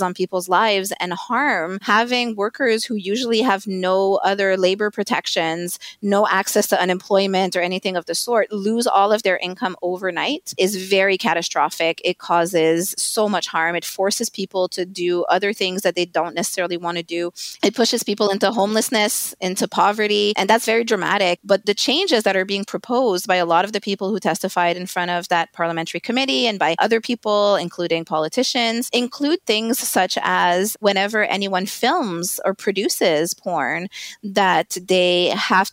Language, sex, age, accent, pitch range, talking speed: English, female, 20-39, American, 180-215 Hz, 170 wpm